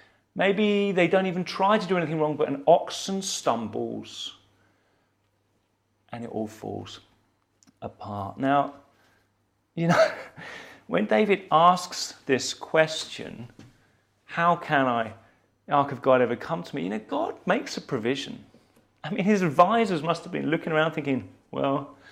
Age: 30-49